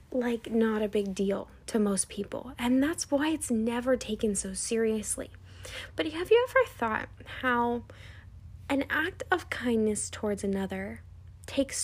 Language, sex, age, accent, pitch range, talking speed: English, female, 10-29, American, 215-270 Hz, 145 wpm